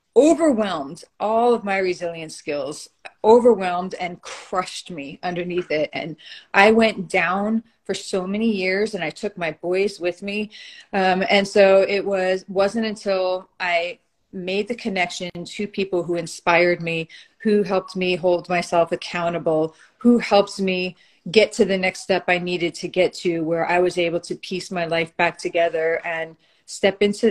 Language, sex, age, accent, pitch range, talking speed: English, female, 30-49, American, 175-210 Hz, 165 wpm